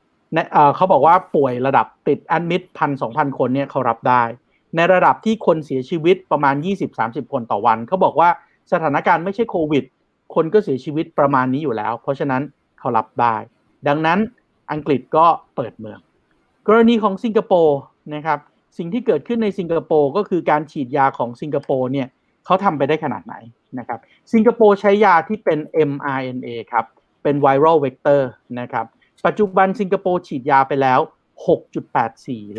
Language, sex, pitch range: Thai, male, 135-190 Hz